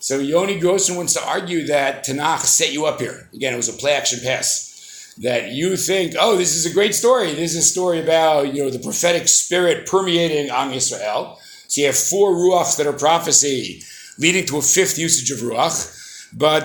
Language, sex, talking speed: English, male, 200 wpm